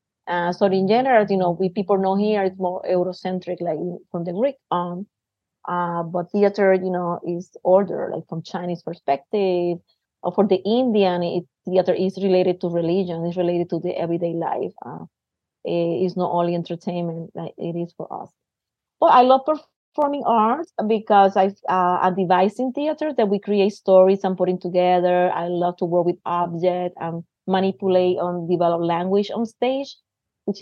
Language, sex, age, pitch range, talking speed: English, female, 30-49, 175-195 Hz, 165 wpm